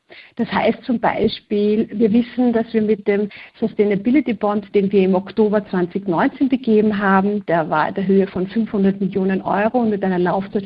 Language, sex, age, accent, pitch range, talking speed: German, female, 50-69, German, 195-225 Hz, 180 wpm